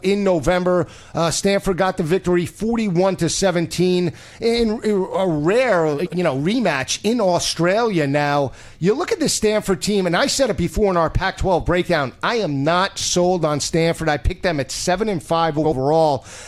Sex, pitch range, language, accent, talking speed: male, 160-205 Hz, English, American, 175 wpm